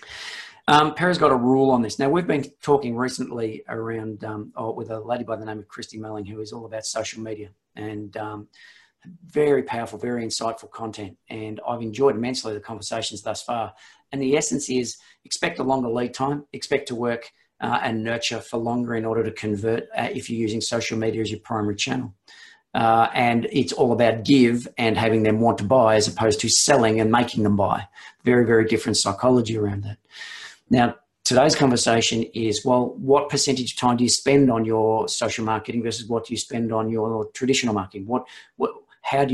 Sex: male